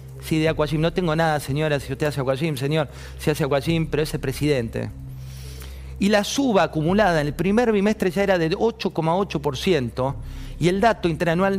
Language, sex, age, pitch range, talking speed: Spanish, male, 40-59, 125-185 Hz, 175 wpm